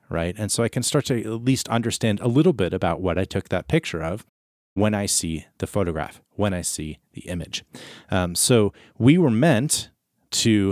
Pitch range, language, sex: 85-110 Hz, English, male